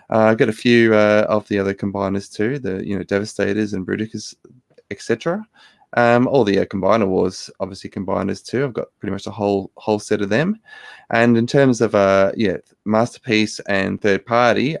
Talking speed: 190 wpm